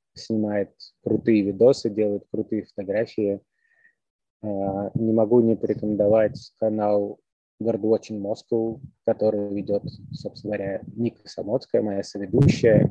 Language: Russian